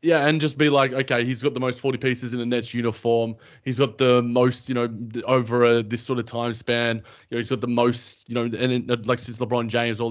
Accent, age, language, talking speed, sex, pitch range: Australian, 20-39, English, 260 wpm, male, 115-130 Hz